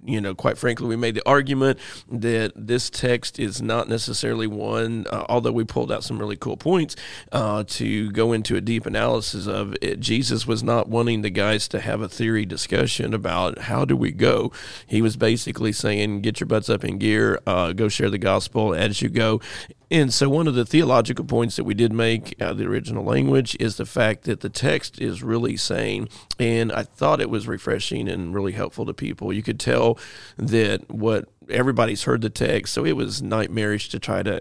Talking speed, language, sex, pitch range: 210 wpm, English, male, 100-115 Hz